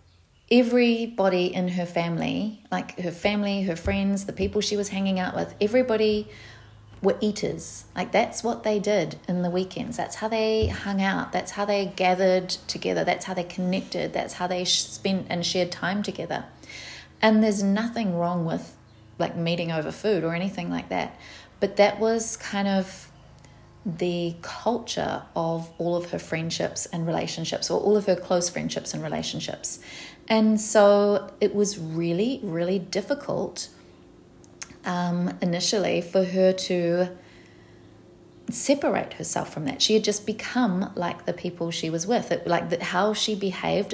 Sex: female